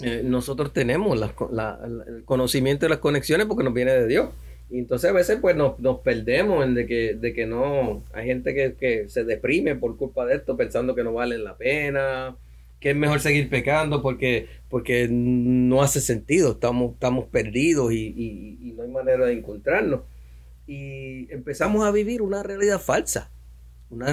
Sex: male